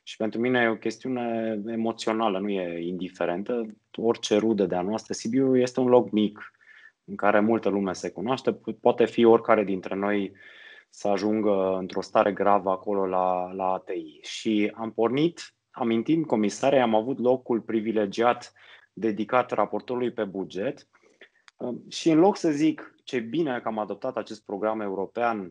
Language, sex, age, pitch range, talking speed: Romanian, male, 20-39, 100-120 Hz, 155 wpm